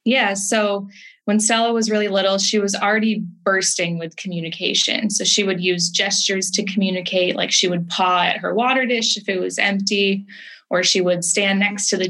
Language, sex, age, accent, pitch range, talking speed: English, female, 10-29, American, 175-200 Hz, 195 wpm